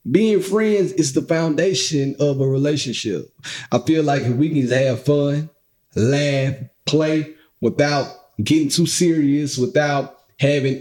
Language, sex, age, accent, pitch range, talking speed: English, male, 30-49, American, 130-180 Hz, 140 wpm